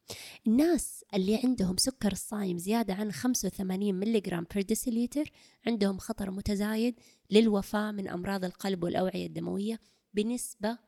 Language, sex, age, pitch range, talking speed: Arabic, female, 20-39, 195-240 Hz, 110 wpm